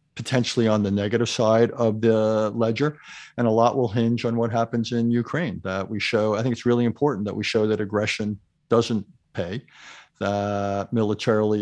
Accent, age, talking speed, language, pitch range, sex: American, 50-69, 180 wpm, English, 105-120 Hz, male